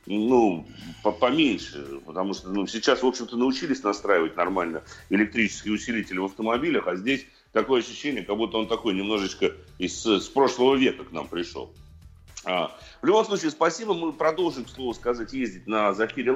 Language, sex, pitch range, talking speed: Russian, male, 115-175 Hz, 160 wpm